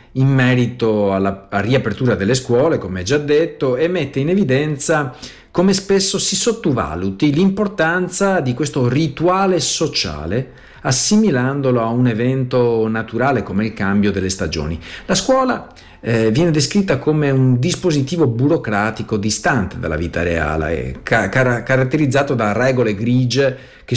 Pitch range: 105-145 Hz